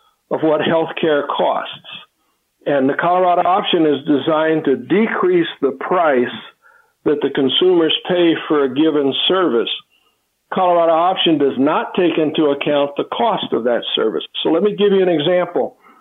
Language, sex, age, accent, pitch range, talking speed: English, male, 60-79, American, 150-200 Hz, 155 wpm